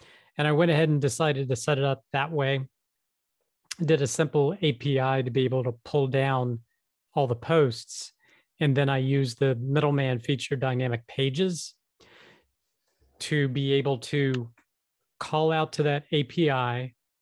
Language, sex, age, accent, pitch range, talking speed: English, male, 40-59, American, 130-155 Hz, 150 wpm